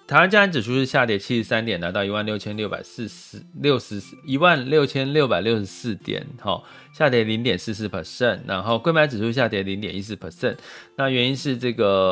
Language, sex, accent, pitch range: Chinese, male, native, 100-135 Hz